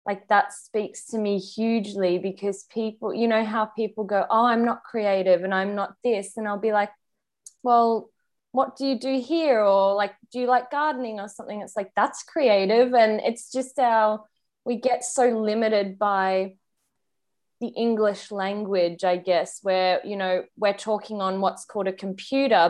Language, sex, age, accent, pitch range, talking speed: English, female, 20-39, Australian, 195-230 Hz, 175 wpm